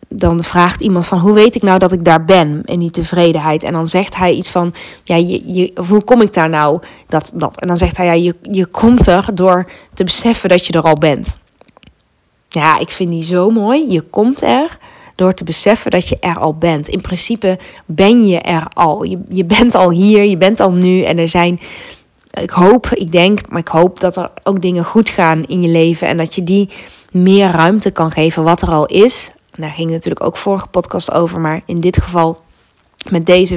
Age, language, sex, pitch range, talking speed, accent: 20-39, Dutch, female, 165-190 Hz, 215 wpm, Dutch